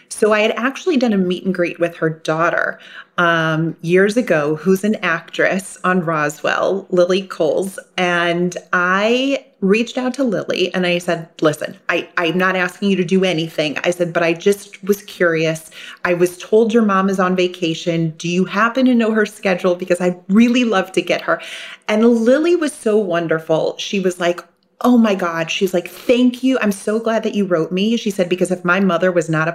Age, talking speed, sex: 30-49, 205 wpm, female